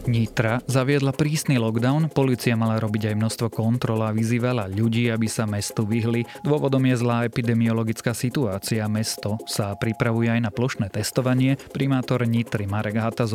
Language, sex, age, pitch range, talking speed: Slovak, male, 30-49, 105-125 Hz, 150 wpm